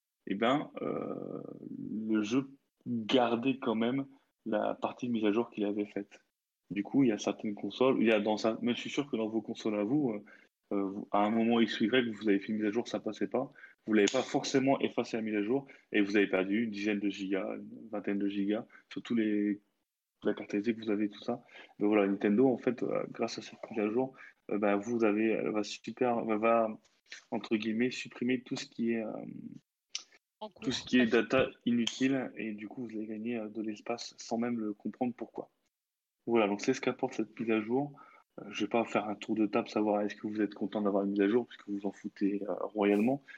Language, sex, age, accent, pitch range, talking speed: French, male, 20-39, French, 105-120 Hz, 240 wpm